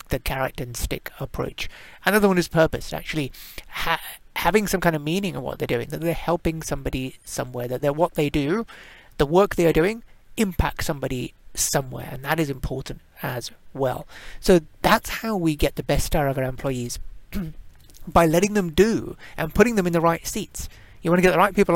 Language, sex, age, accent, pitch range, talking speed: English, male, 30-49, British, 140-180 Hz, 200 wpm